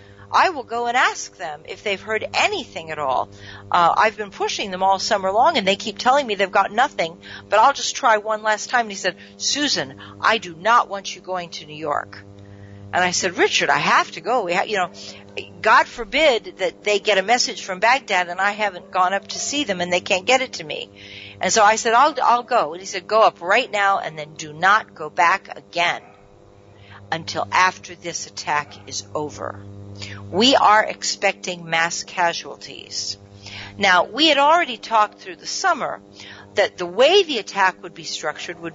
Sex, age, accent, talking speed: female, 50-69, American, 205 wpm